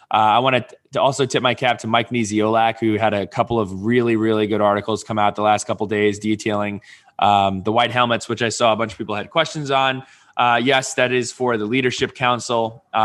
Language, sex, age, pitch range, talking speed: English, male, 20-39, 105-130 Hz, 230 wpm